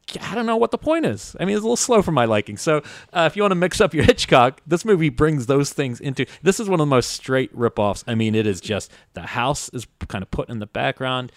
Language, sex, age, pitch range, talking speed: English, male, 30-49, 100-130 Hz, 285 wpm